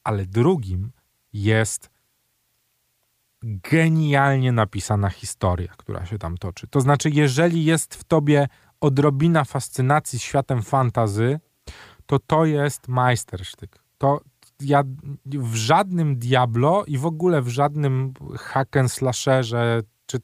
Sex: male